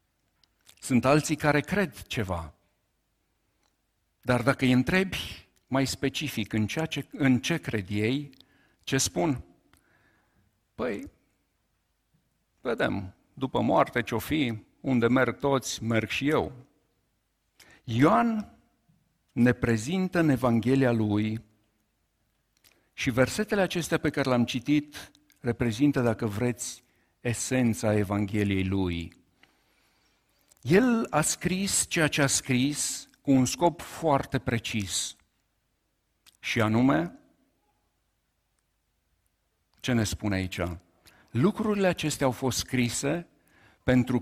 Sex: male